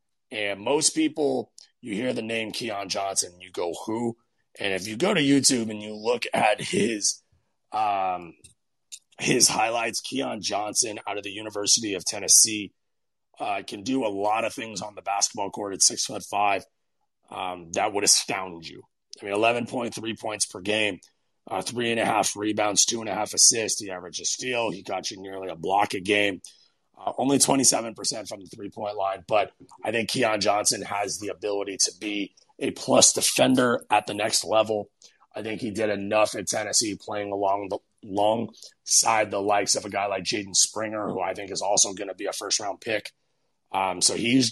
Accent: American